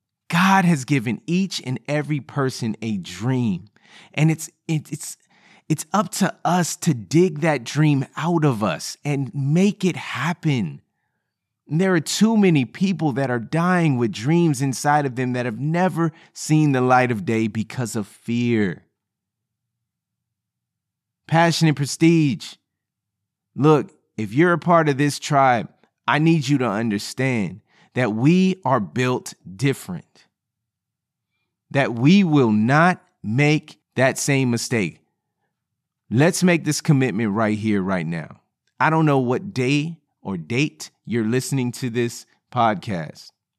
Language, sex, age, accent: English, male, 30-49, American